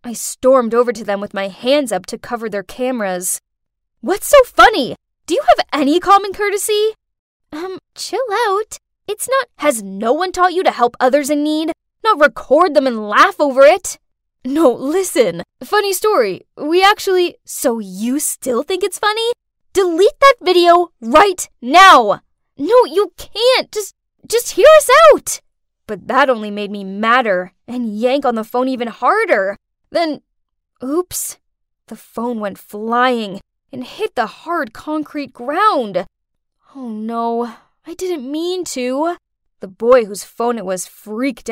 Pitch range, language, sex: 235-350 Hz, English, female